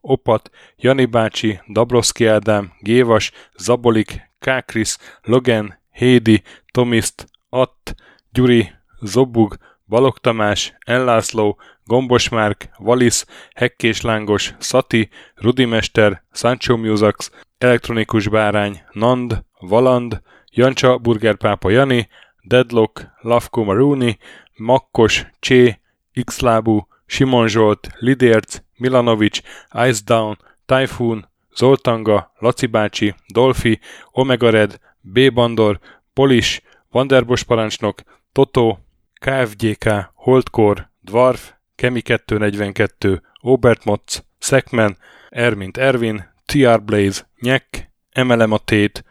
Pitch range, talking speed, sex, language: 105-125 Hz, 85 wpm, male, Hungarian